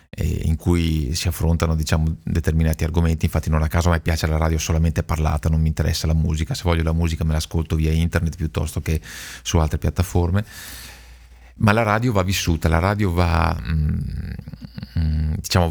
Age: 40-59